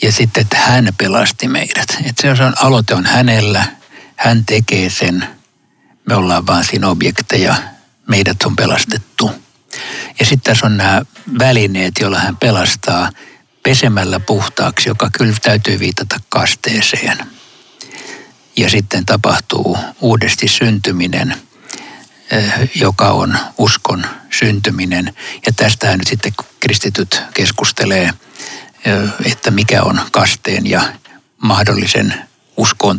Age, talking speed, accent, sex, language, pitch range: 60-79, 110 wpm, native, male, Finnish, 100-120 Hz